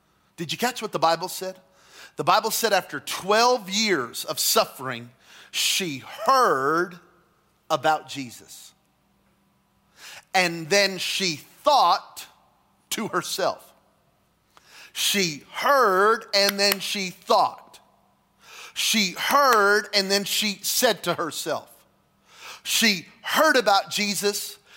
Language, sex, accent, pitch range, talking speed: English, male, American, 170-215 Hz, 105 wpm